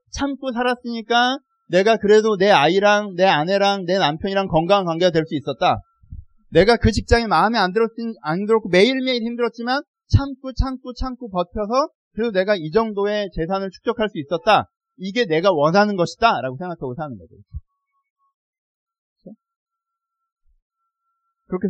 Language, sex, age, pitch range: Korean, male, 40-59, 175-265 Hz